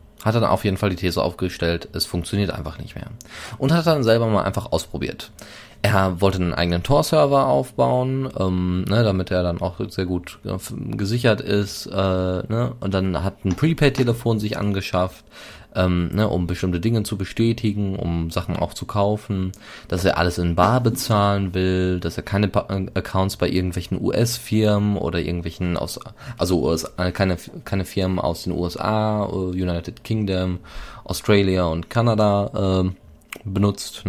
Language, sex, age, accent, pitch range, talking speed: German, male, 20-39, German, 90-105 Hz, 145 wpm